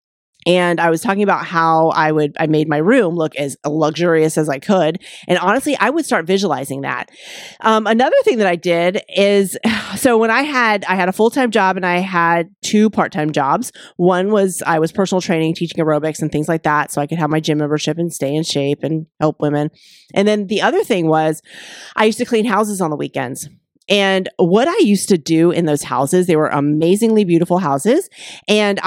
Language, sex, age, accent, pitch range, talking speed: English, female, 30-49, American, 160-220 Hz, 210 wpm